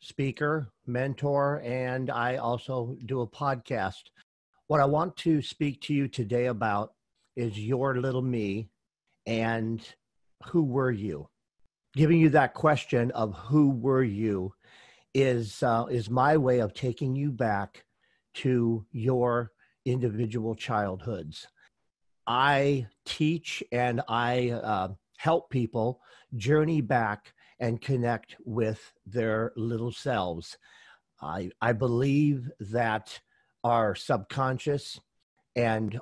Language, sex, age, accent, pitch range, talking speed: English, male, 50-69, American, 110-130 Hz, 115 wpm